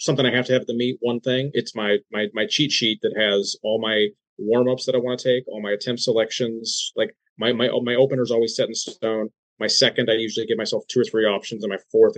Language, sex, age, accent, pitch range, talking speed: English, male, 30-49, American, 110-130 Hz, 260 wpm